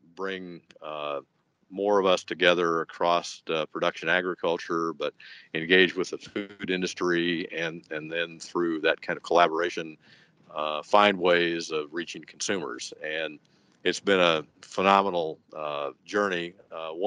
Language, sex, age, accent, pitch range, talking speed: English, male, 50-69, American, 85-95 Hz, 130 wpm